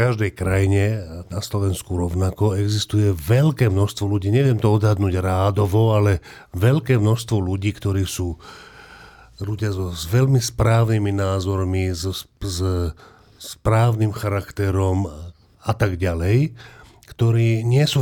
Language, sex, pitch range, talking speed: Slovak, male, 100-125 Hz, 120 wpm